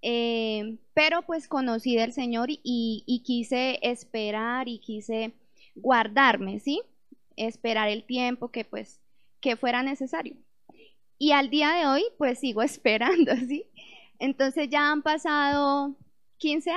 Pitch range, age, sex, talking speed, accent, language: 230-285 Hz, 20-39, female, 130 wpm, Colombian, Spanish